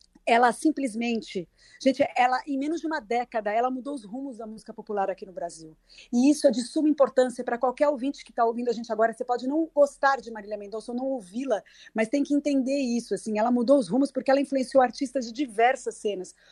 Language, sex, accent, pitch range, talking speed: Portuguese, female, Brazilian, 220-265 Hz, 220 wpm